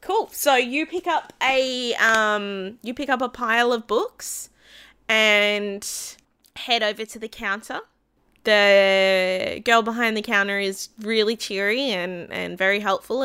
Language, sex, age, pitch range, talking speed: English, female, 20-39, 190-225 Hz, 145 wpm